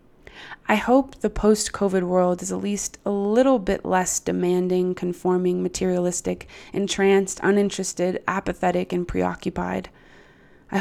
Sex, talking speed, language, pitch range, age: female, 115 wpm, English, 180-195 Hz, 20-39